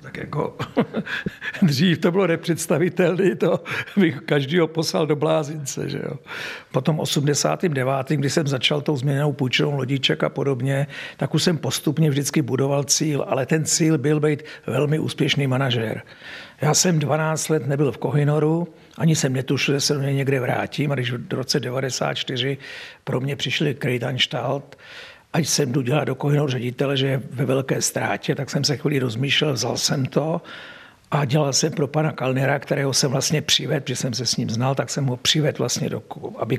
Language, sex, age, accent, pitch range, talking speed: Czech, male, 60-79, native, 130-155 Hz, 175 wpm